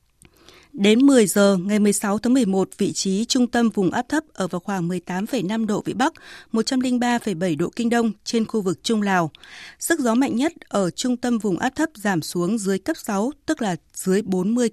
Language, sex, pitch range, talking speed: Vietnamese, female, 195-245 Hz, 200 wpm